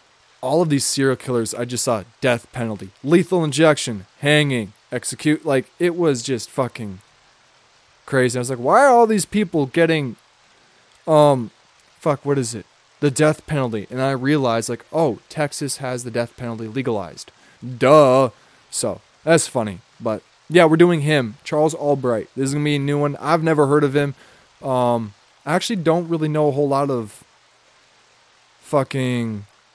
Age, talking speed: 20-39, 165 wpm